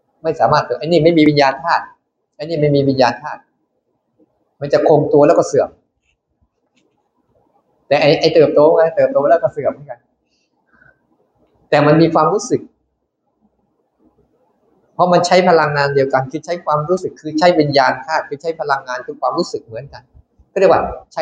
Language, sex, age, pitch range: Thai, male, 20-39, 125-165 Hz